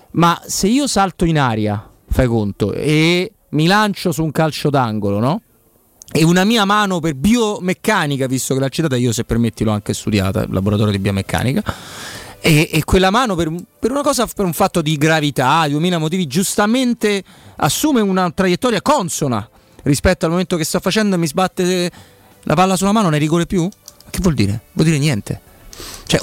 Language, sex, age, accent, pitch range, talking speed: Italian, male, 30-49, native, 115-175 Hz, 180 wpm